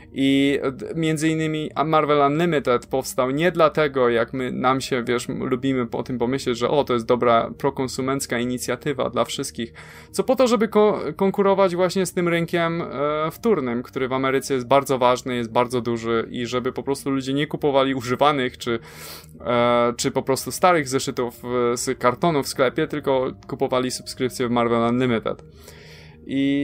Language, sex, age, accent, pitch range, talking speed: Polish, male, 20-39, native, 120-155 Hz, 165 wpm